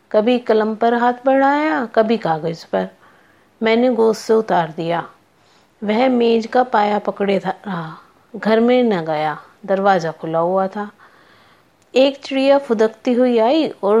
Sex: female